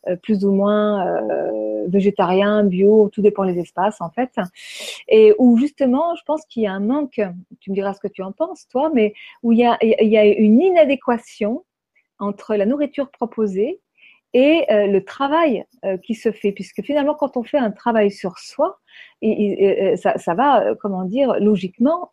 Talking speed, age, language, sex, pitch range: 185 wpm, 40-59, French, female, 200-275 Hz